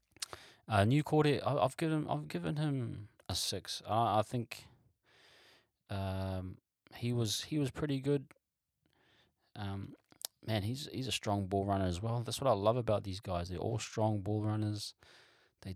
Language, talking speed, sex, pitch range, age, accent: English, 170 wpm, male, 95-110 Hz, 20-39, Australian